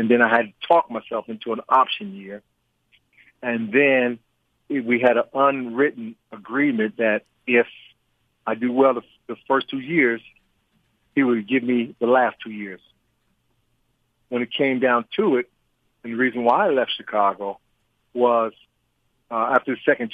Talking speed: 160 wpm